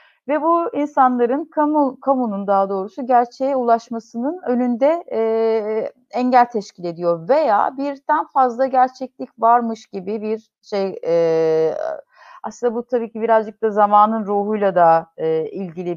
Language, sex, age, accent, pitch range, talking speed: Turkish, female, 30-49, native, 200-255 Hz, 130 wpm